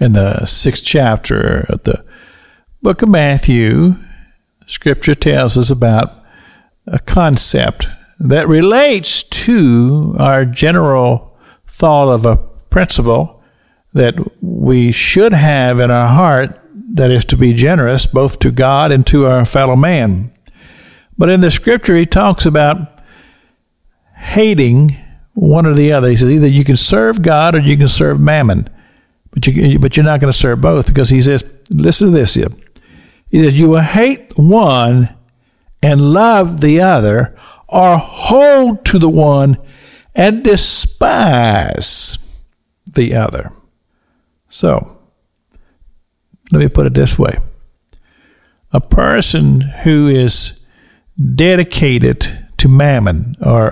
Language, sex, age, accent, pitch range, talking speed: English, male, 50-69, American, 120-160 Hz, 130 wpm